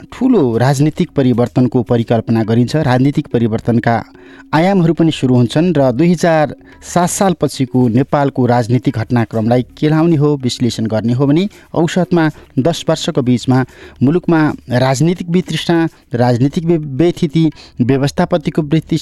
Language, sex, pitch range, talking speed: English, male, 125-170 Hz, 115 wpm